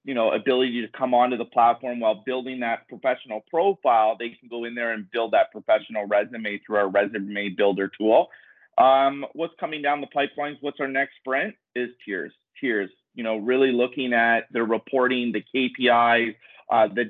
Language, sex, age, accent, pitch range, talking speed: English, male, 30-49, American, 110-125 Hz, 185 wpm